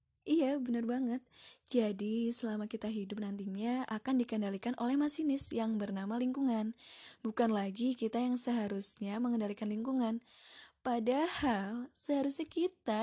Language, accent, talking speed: Indonesian, native, 115 wpm